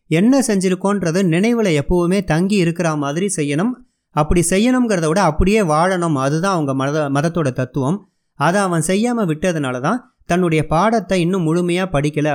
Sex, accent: male, native